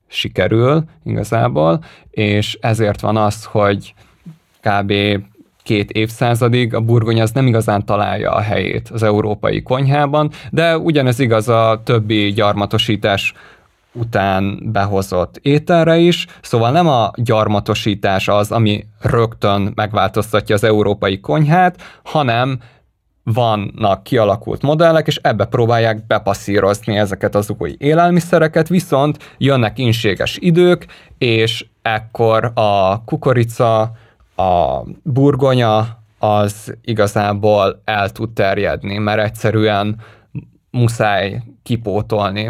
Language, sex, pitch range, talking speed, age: Hungarian, male, 105-125 Hz, 105 wpm, 20-39